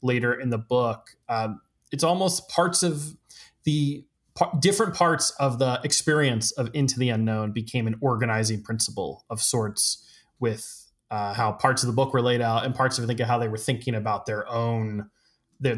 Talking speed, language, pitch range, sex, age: 180 wpm, English, 110-135 Hz, male, 20-39